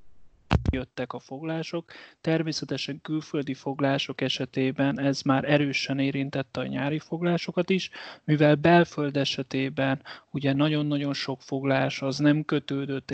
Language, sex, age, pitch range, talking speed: Hungarian, male, 30-49, 130-145 Hz, 115 wpm